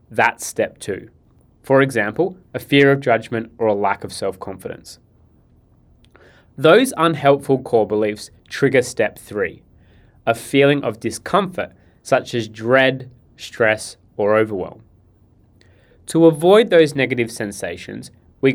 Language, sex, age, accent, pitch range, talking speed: English, male, 20-39, Australian, 110-135 Hz, 120 wpm